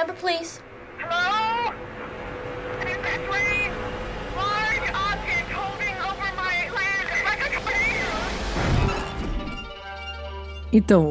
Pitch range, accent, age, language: 140-200 Hz, Brazilian, 20-39, Portuguese